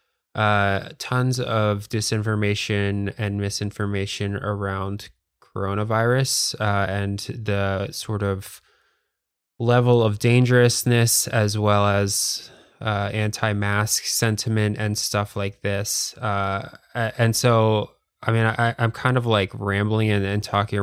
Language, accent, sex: English, American, male